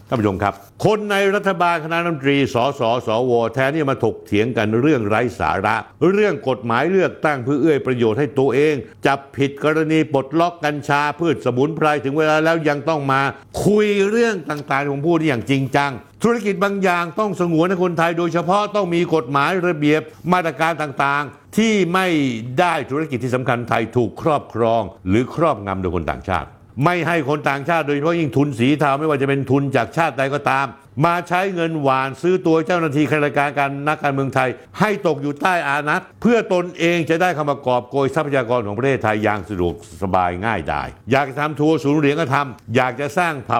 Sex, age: male, 60-79